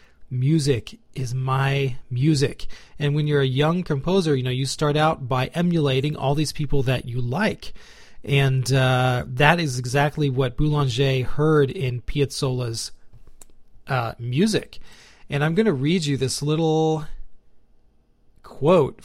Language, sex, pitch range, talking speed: English, male, 130-155 Hz, 140 wpm